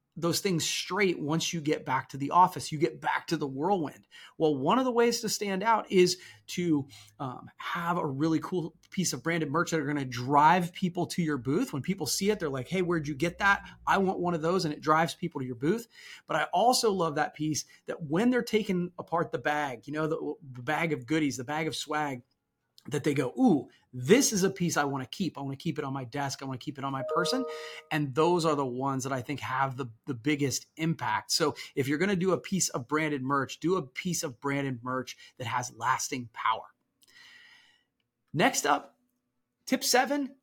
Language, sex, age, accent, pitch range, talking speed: English, male, 30-49, American, 145-195 Hz, 235 wpm